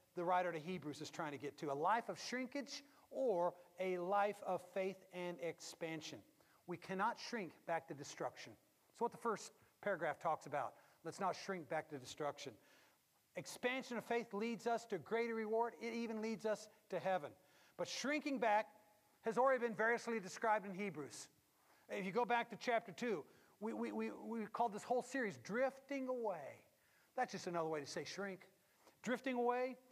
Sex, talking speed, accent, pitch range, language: male, 180 wpm, American, 170-235 Hz, English